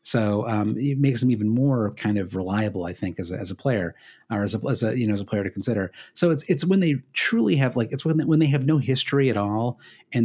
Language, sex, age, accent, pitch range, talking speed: English, male, 30-49, American, 105-140 Hz, 280 wpm